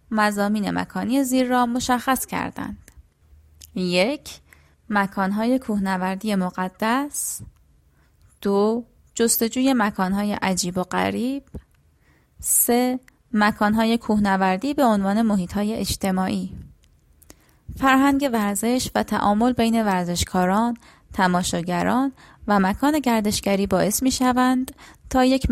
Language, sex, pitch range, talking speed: Persian, female, 185-245 Hz, 90 wpm